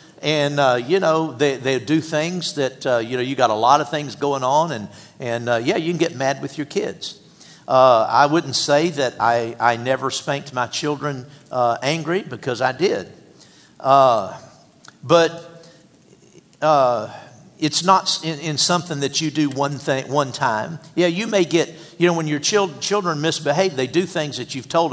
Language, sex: English, male